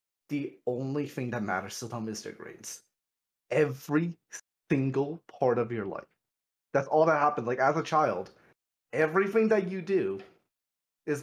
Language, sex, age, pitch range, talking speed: English, male, 30-49, 135-175 Hz, 155 wpm